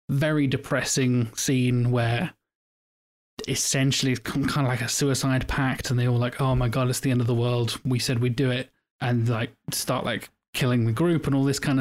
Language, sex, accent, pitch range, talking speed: English, male, British, 120-135 Hz, 210 wpm